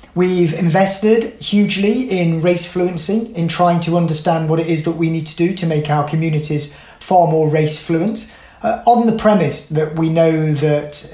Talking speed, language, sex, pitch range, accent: 185 wpm, English, male, 155-180 Hz, British